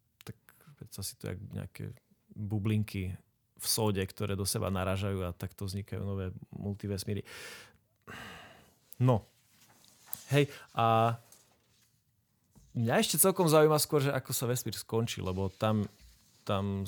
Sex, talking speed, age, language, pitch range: male, 115 wpm, 30-49, Slovak, 100-115 Hz